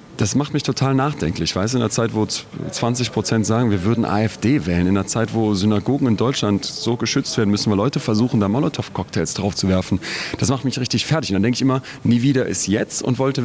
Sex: male